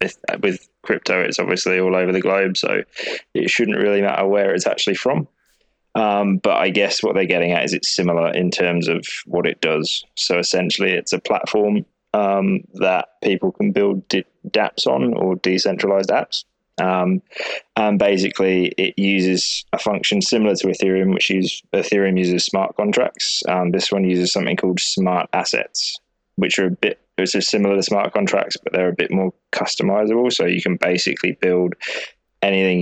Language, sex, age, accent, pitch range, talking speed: English, male, 20-39, British, 90-100 Hz, 170 wpm